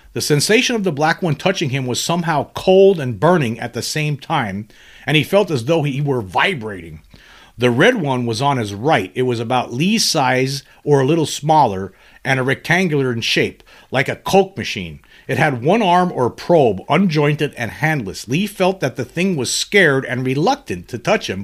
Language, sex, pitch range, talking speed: English, male, 120-160 Hz, 200 wpm